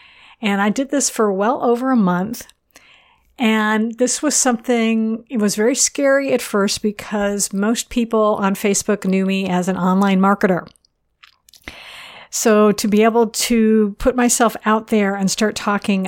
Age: 50-69